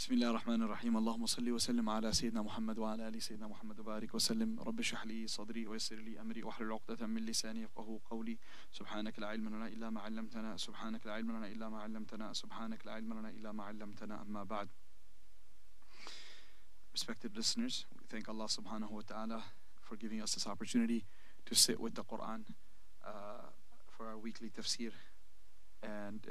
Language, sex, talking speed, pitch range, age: English, male, 50 wpm, 110-115 Hz, 30-49